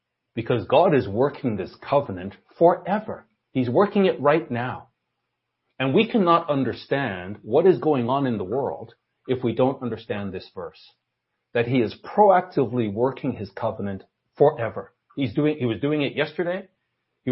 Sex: male